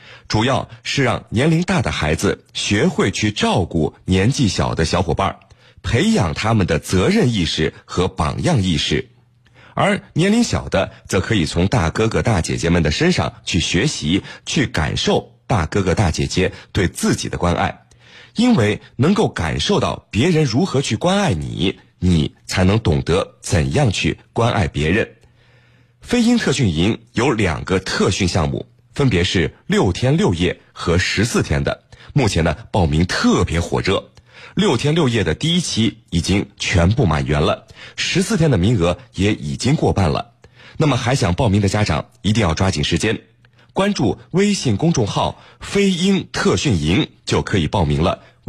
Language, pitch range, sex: Chinese, 90-135 Hz, male